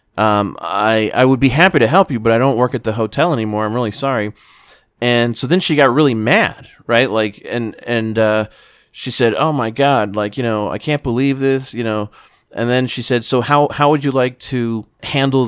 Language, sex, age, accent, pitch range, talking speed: English, male, 30-49, American, 110-135 Hz, 225 wpm